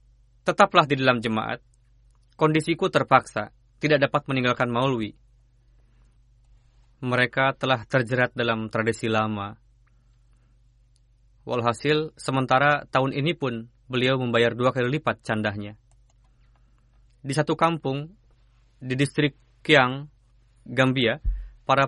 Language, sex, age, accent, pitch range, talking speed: Indonesian, male, 20-39, native, 120-150 Hz, 95 wpm